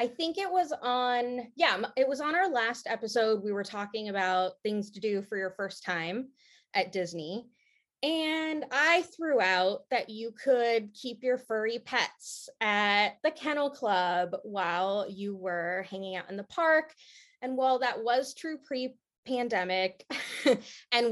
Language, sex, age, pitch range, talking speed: English, female, 20-39, 195-260 Hz, 155 wpm